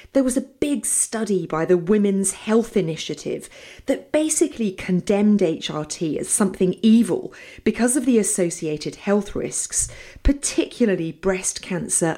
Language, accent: English, British